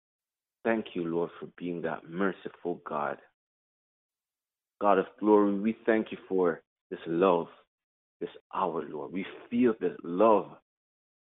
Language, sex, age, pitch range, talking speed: English, male, 30-49, 80-105 Hz, 125 wpm